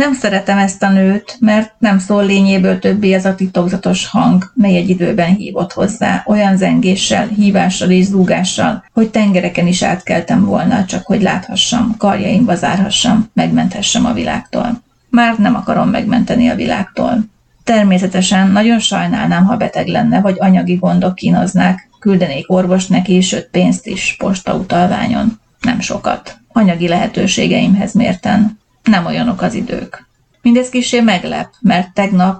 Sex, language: female, Hungarian